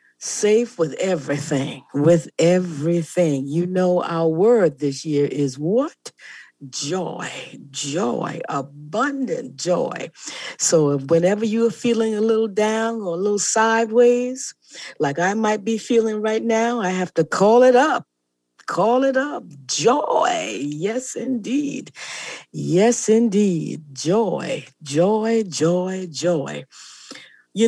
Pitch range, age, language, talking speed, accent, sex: 155-230 Hz, 50-69, English, 120 wpm, American, female